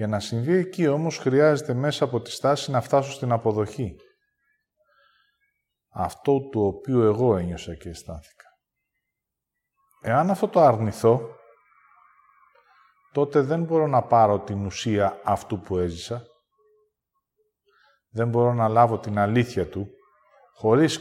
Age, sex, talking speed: 40-59, male, 125 wpm